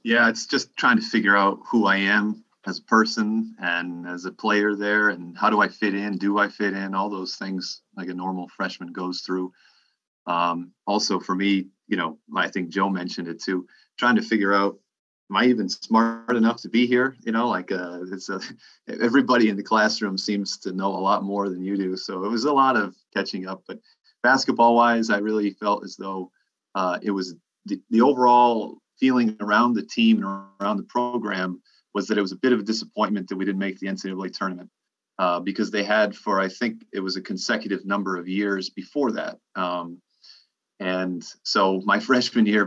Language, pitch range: English, 95-110 Hz